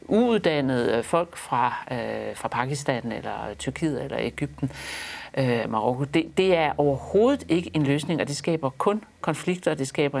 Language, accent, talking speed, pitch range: Danish, native, 160 wpm, 145-200 Hz